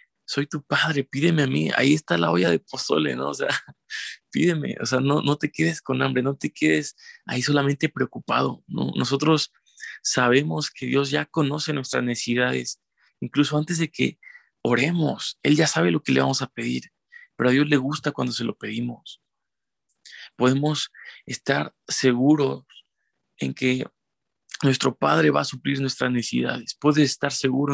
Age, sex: 20-39, male